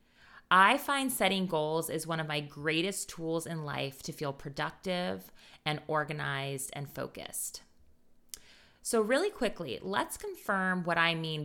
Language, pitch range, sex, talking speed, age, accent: English, 155-195 Hz, female, 140 wpm, 20-39, American